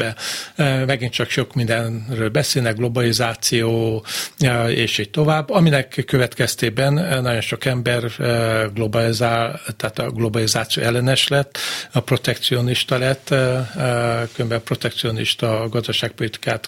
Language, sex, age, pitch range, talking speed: Hungarian, male, 50-69, 115-130 Hz, 105 wpm